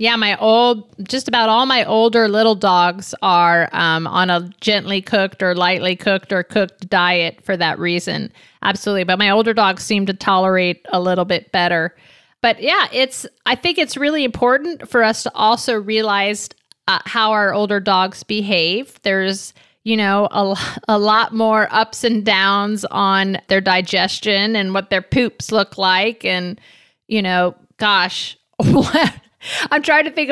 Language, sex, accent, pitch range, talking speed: English, female, American, 190-235 Hz, 165 wpm